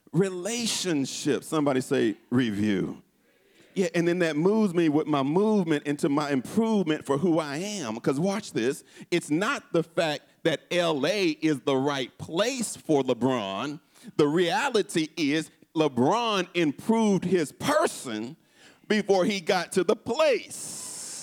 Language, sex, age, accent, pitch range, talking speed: English, male, 40-59, American, 155-235 Hz, 135 wpm